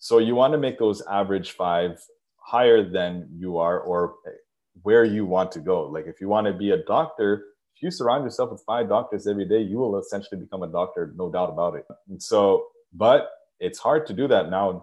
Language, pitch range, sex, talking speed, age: English, 95-120 Hz, male, 225 wpm, 20-39